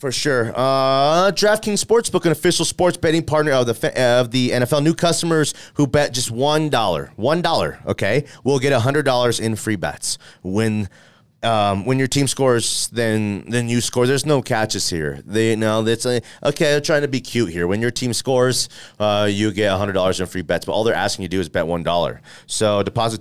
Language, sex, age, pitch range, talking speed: English, male, 30-49, 100-125 Hz, 205 wpm